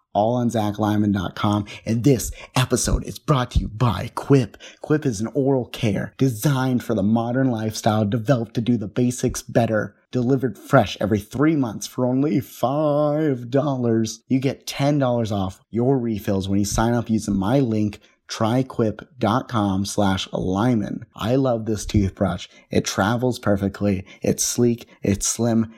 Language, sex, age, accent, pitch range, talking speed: English, male, 30-49, American, 105-125 Hz, 145 wpm